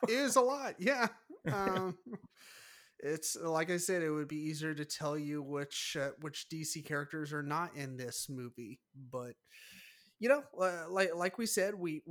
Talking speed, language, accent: 175 wpm, English, American